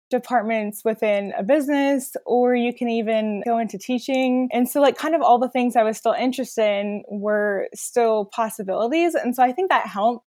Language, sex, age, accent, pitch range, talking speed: English, female, 10-29, American, 215-250 Hz, 195 wpm